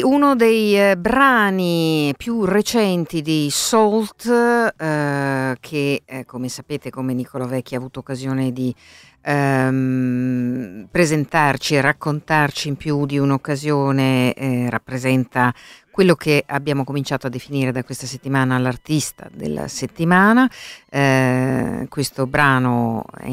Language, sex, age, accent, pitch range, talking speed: Italian, female, 50-69, native, 130-170 Hz, 115 wpm